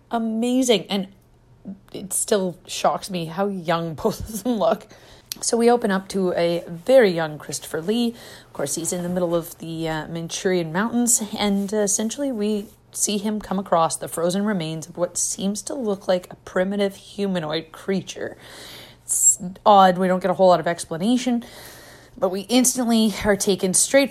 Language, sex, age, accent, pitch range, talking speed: English, female, 30-49, American, 165-210 Hz, 175 wpm